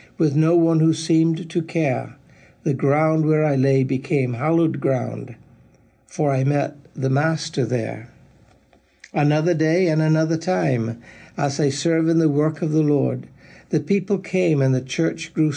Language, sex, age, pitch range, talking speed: English, male, 60-79, 140-165 Hz, 160 wpm